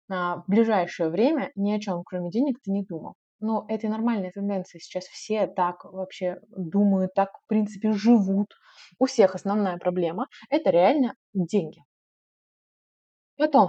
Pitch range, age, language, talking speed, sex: 185-235 Hz, 20-39, Russian, 140 wpm, female